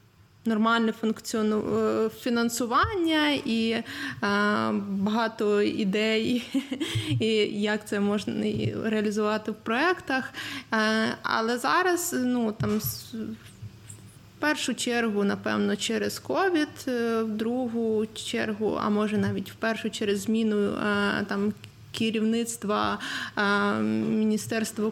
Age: 20-39